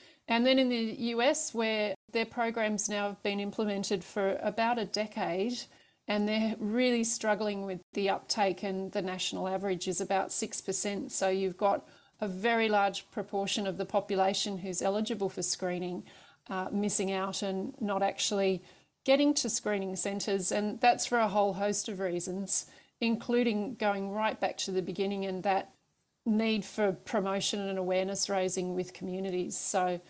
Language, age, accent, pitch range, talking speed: English, 40-59, Australian, 190-220 Hz, 160 wpm